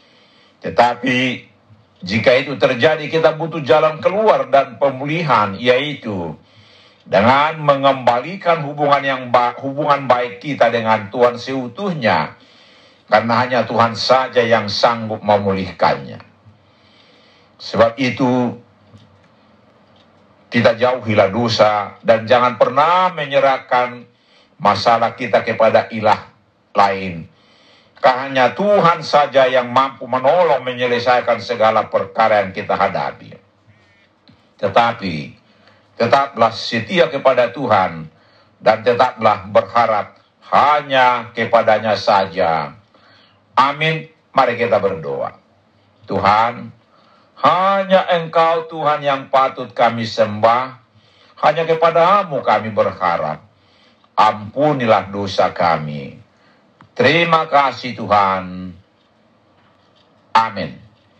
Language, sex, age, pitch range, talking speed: Indonesian, male, 60-79, 105-140 Hz, 90 wpm